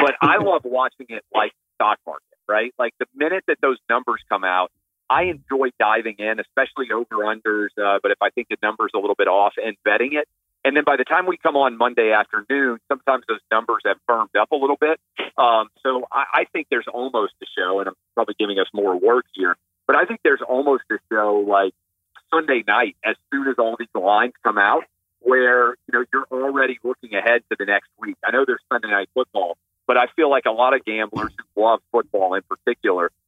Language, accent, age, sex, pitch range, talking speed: English, American, 40-59, male, 105-135 Hz, 220 wpm